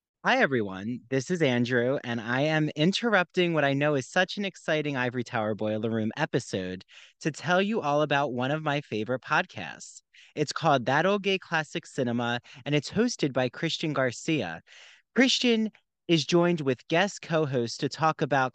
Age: 30-49